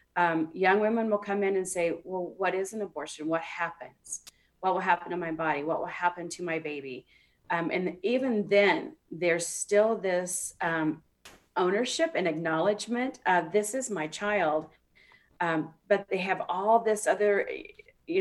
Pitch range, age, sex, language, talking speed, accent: 160-200 Hz, 40-59, female, English, 170 wpm, American